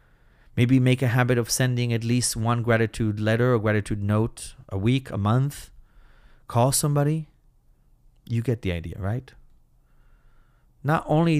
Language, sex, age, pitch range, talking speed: English, male, 30-49, 100-125 Hz, 140 wpm